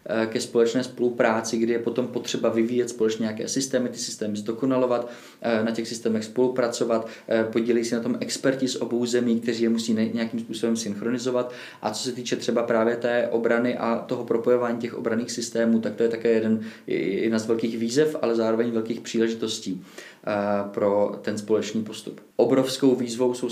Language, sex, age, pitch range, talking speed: Czech, male, 20-39, 115-125 Hz, 170 wpm